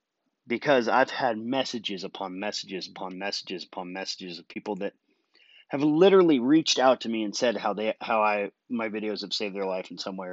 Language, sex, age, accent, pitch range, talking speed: English, male, 30-49, American, 105-135 Hz, 200 wpm